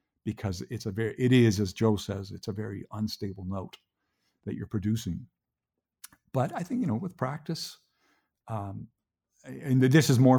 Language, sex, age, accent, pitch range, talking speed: English, male, 50-69, American, 95-110 Hz, 170 wpm